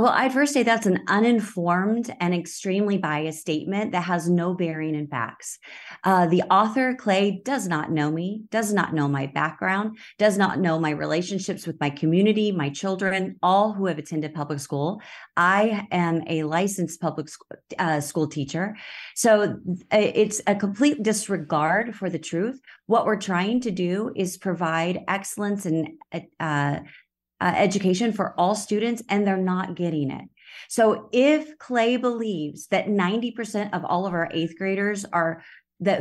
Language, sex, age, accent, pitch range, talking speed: English, female, 30-49, American, 165-215 Hz, 160 wpm